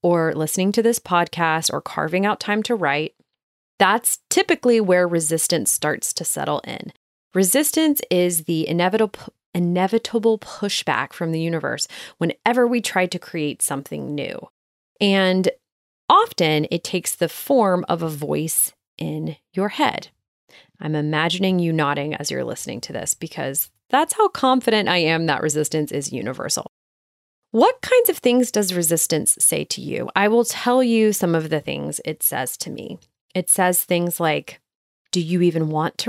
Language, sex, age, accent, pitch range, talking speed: English, female, 30-49, American, 160-220 Hz, 160 wpm